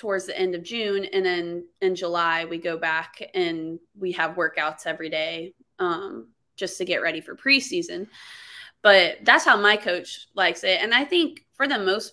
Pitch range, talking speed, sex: 175-210 Hz, 190 wpm, female